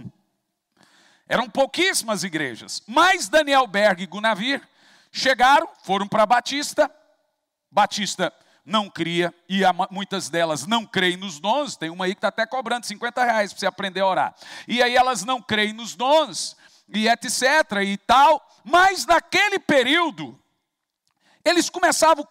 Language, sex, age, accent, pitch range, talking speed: Portuguese, male, 50-69, Brazilian, 215-300 Hz, 145 wpm